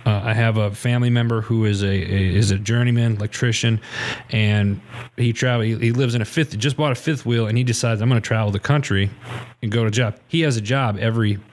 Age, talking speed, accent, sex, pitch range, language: 30-49, 225 wpm, American, male, 105-120 Hz, English